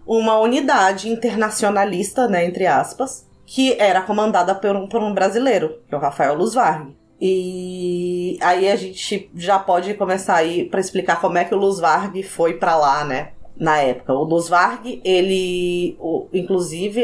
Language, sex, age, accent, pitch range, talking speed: Portuguese, female, 20-39, Brazilian, 175-215 Hz, 160 wpm